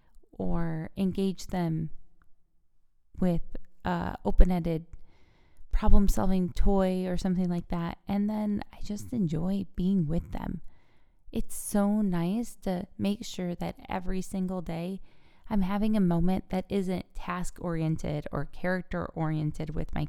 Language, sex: English, female